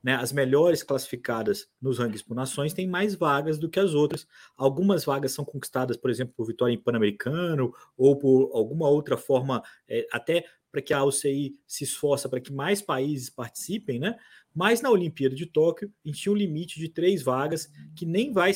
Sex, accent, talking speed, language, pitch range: male, Brazilian, 190 wpm, Portuguese, 130-165 Hz